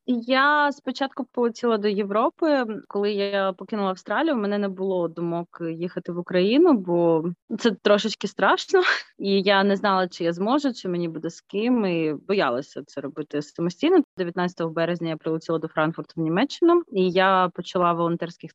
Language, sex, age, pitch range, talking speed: Ukrainian, female, 20-39, 170-220 Hz, 165 wpm